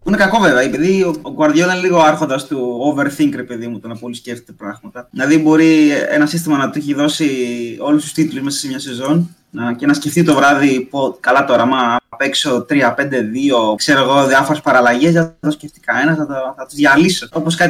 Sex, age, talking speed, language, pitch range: male, 20-39, 205 wpm, Greek, 145-175 Hz